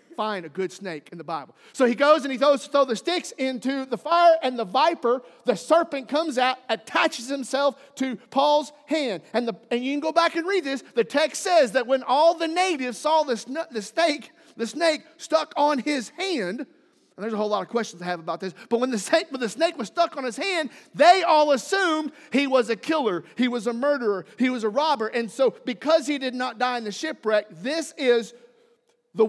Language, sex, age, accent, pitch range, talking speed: English, male, 40-59, American, 215-300 Hz, 225 wpm